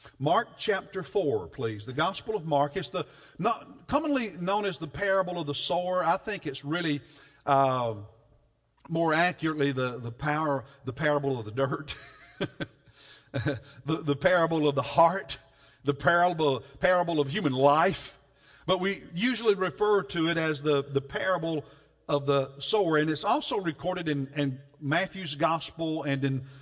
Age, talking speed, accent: 50-69, 155 wpm, American